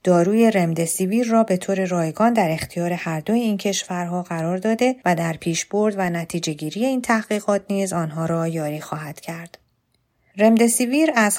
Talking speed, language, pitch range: 165 wpm, Persian, 160-195 Hz